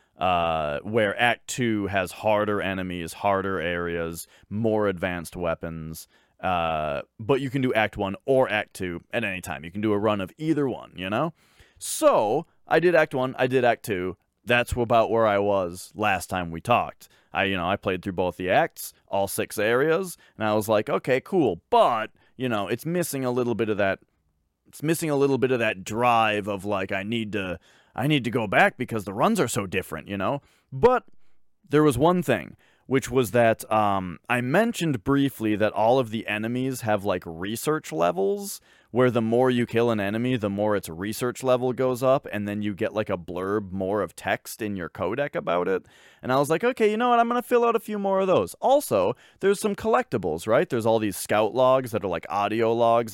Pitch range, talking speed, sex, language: 100-130 Hz, 215 wpm, male, English